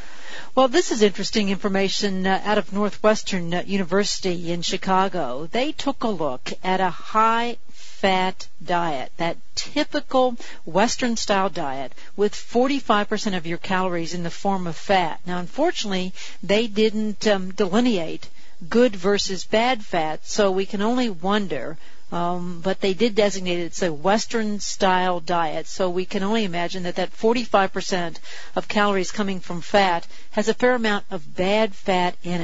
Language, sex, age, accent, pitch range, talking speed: English, female, 50-69, American, 180-225 Hz, 145 wpm